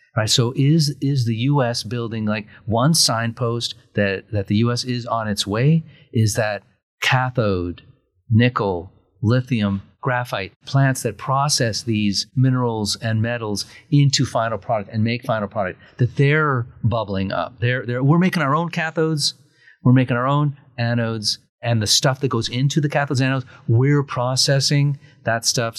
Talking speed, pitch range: 160 wpm, 110-140 Hz